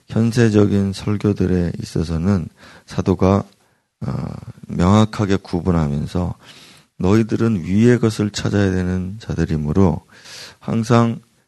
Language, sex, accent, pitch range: Korean, male, native, 85-105 Hz